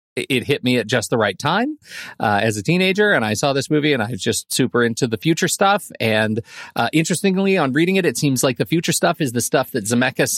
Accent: American